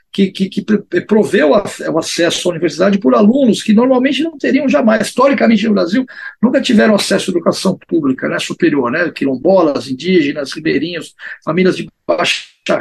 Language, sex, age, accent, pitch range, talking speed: Portuguese, male, 50-69, Brazilian, 185-245 Hz, 155 wpm